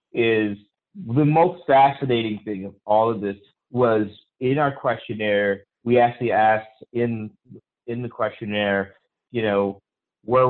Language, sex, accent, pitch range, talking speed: English, male, American, 110-130 Hz, 130 wpm